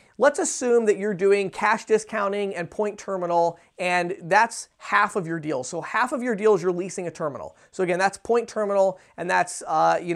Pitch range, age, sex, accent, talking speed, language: 180-220 Hz, 30-49, male, American, 200 wpm, English